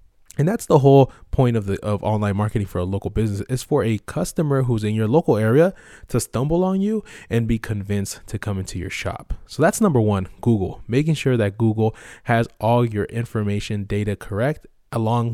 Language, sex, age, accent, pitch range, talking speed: English, male, 20-39, American, 100-125 Hz, 200 wpm